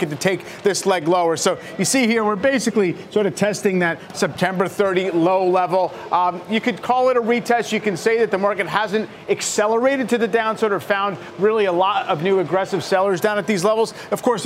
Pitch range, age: 180-215 Hz, 40-59